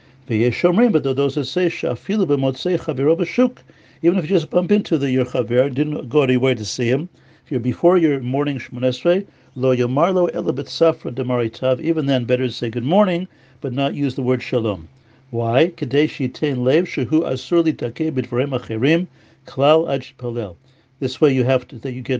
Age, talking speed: 60-79, 115 wpm